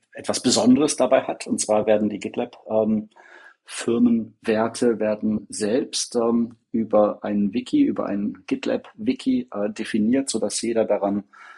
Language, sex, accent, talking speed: German, male, German, 125 wpm